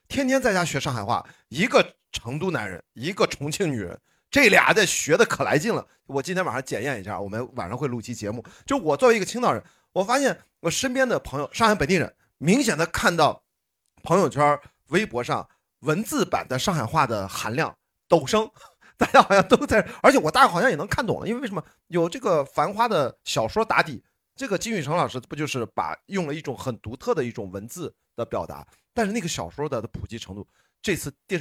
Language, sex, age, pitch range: Chinese, male, 30-49, 120-185 Hz